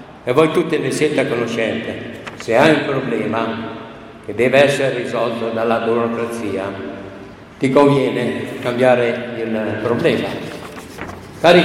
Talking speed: 115 wpm